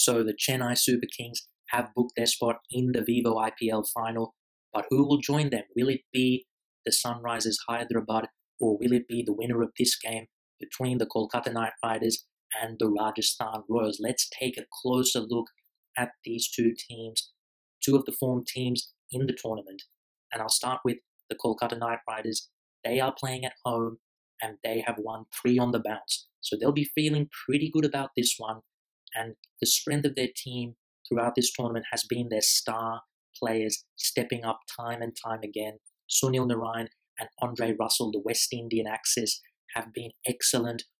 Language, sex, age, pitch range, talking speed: English, male, 20-39, 115-125 Hz, 180 wpm